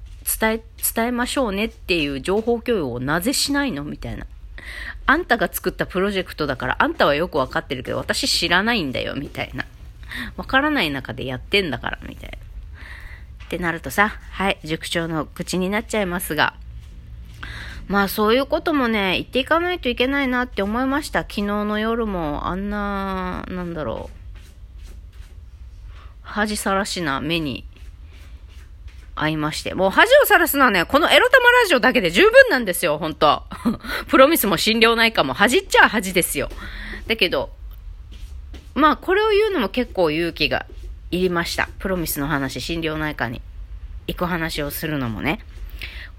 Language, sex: Japanese, female